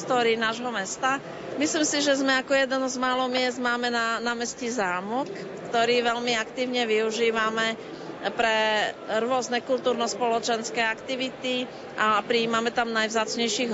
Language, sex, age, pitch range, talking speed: Slovak, female, 40-59, 225-250 Hz, 120 wpm